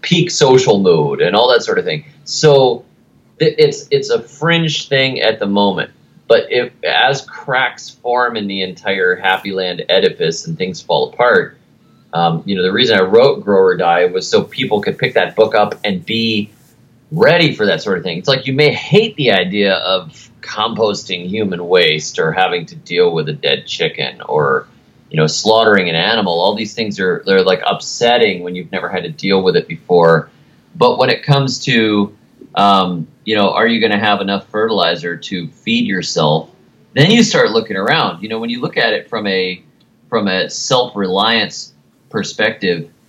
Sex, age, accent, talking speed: male, 30-49, American, 190 wpm